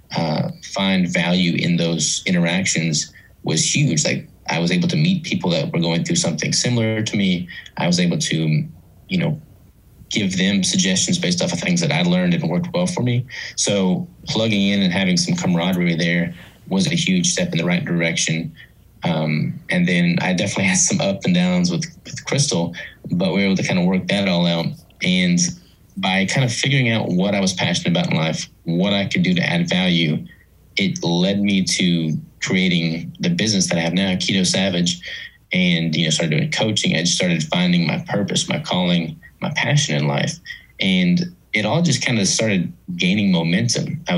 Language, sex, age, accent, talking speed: English, male, 20-39, American, 195 wpm